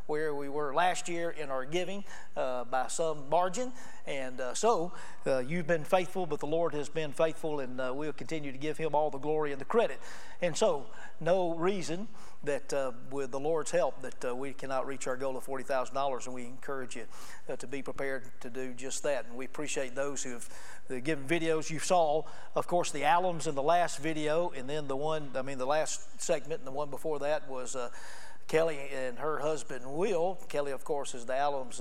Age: 40-59